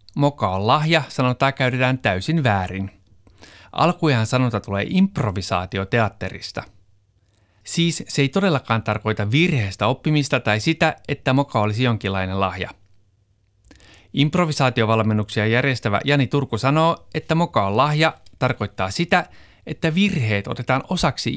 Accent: native